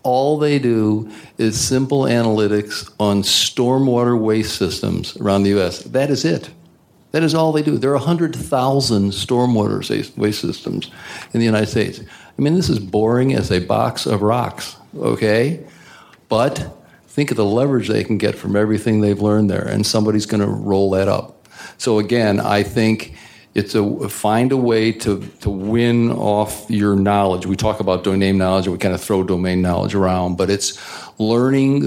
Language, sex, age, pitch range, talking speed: English, male, 60-79, 100-120 Hz, 175 wpm